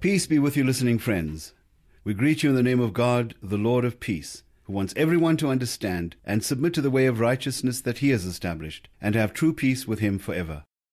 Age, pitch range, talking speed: 50-69, 100-135 Hz, 225 wpm